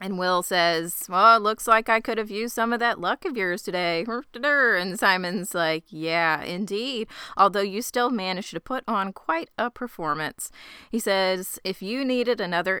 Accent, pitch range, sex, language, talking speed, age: American, 165-225 Hz, female, English, 185 wpm, 30-49